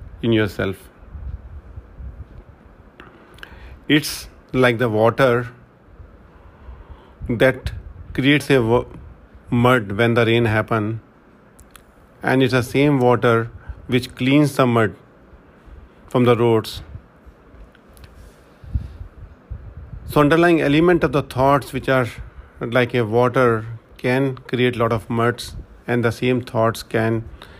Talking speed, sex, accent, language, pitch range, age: 105 wpm, male, Indian, English, 95-130 Hz, 40-59